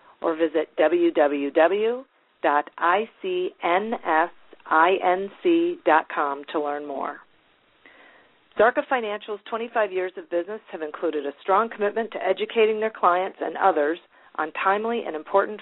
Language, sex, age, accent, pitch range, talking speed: English, female, 40-59, American, 155-210 Hz, 105 wpm